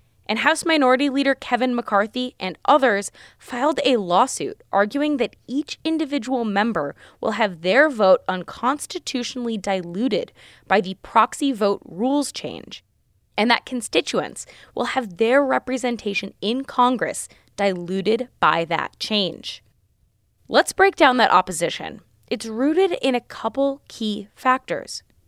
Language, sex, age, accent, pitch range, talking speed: English, female, 20-39, American, 180-260 Hz, 125 wpm